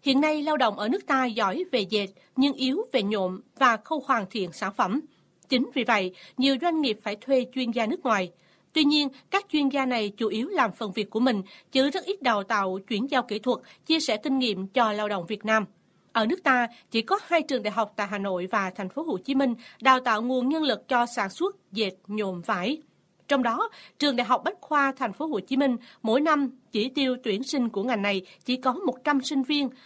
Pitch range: 215-280 Hz